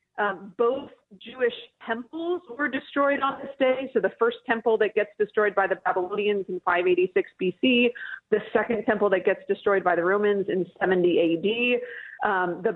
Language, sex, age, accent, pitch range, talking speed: English, female, 30-49, American, 200-260 Hz, 170 wpm